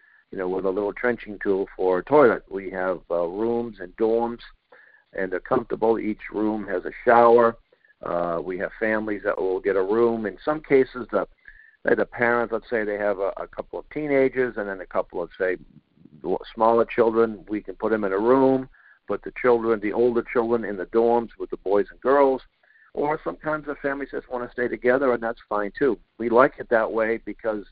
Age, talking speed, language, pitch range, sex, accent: 50-69, 210 wpm, English, 105-130 Hz, male, American